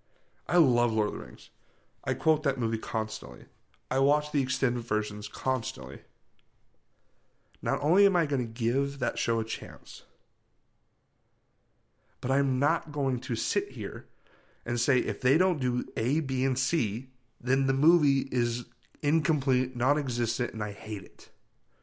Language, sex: English, male